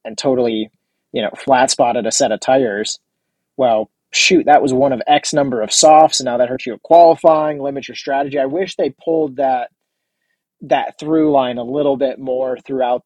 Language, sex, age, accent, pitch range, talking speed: English, male, 30-49, American, 125-155 Hz, 195 wpm